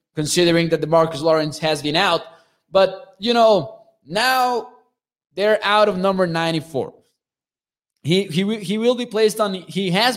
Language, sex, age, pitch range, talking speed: English, male, 20-39, 165-220 Hz, 155 wpm